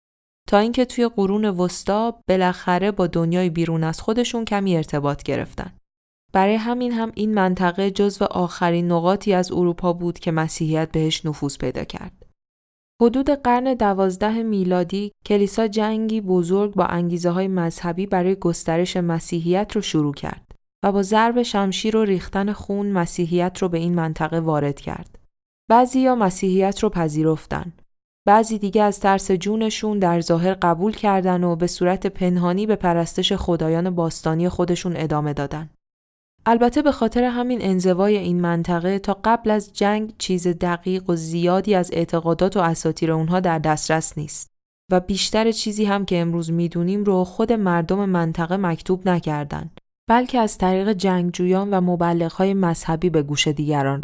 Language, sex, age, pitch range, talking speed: Persian, female, 10-29, 170-205 Hz, 150 wpm